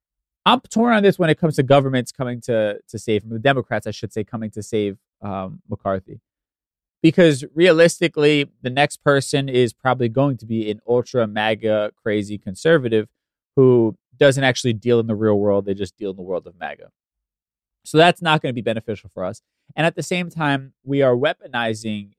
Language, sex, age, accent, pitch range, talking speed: English, male, 20-39, American, 105-130 Hz, 190 wpm